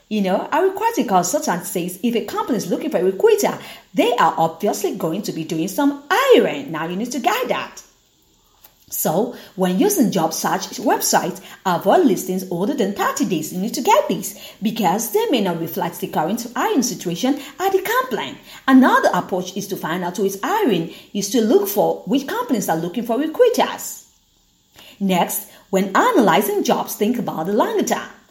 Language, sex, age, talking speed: English, female, 40-59, 180 wpm